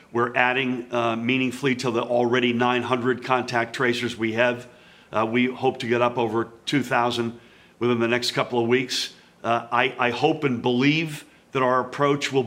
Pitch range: 120-140 Hz